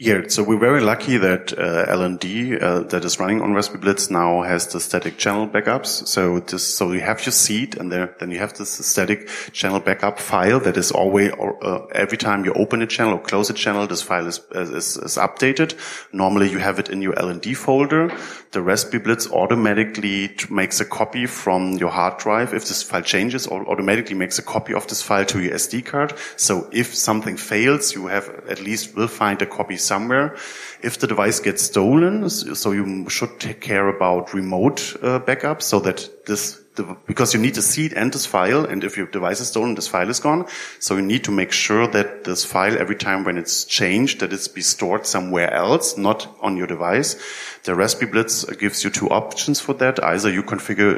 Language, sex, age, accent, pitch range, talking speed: English, male, 30-49, German, 95-115 Hz, 210 wpm